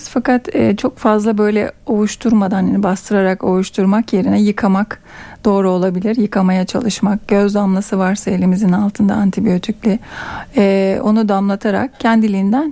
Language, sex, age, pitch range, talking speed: Turkish, female, 40-59, 195-225 Hz, 120 wpm